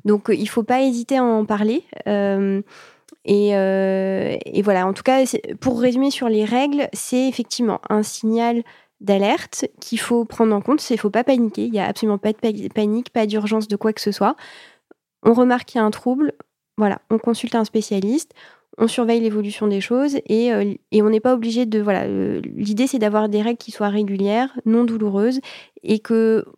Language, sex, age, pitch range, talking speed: French, female, 20-39, 205-240 Hz, 205 wpm